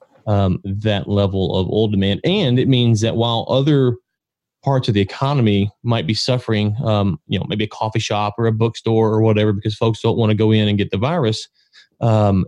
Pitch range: 105-125 Hz